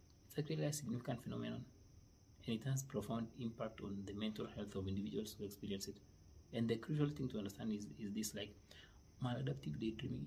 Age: 30-49